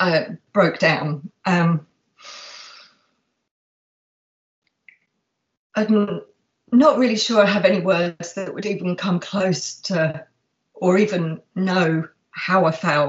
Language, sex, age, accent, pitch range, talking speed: English, female, 40-59, British, 165-200 Hz, 110 wpm